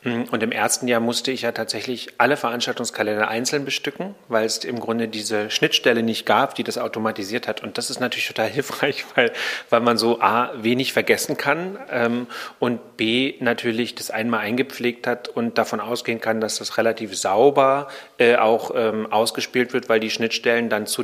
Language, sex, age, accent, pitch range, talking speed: German, male, 40-59, German, 110-130 Hz, 185 wpm